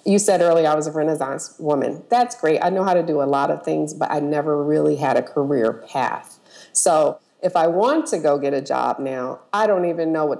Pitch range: 155-195 Hz